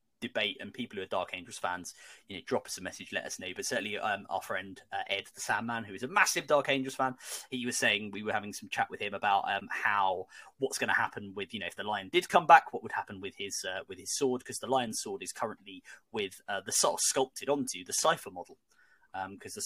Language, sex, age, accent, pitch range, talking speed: English, male, 20-39, British, 125-160 Hz, 270 wpm